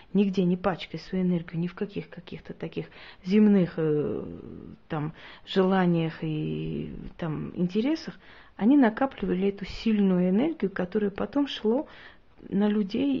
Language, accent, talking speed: Russian, native, 120 wpm